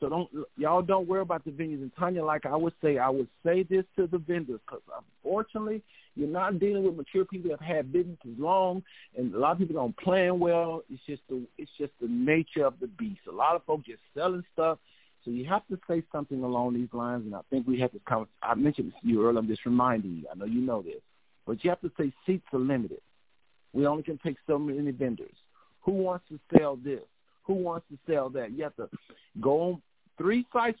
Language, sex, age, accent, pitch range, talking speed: English, male, 50-69, American, 130-180 Hz, 240 wpm